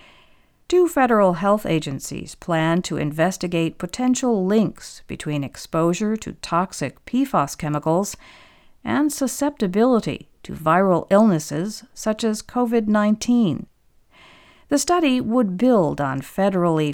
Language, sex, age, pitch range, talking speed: English, female, 50-69, 155-220 Hz, 105 wpm